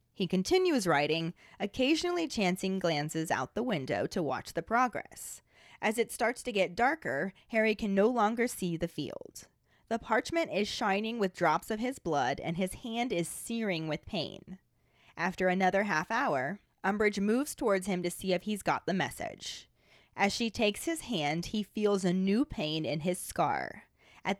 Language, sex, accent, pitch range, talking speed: English, female, American, 175-230 Hz, 175 wpm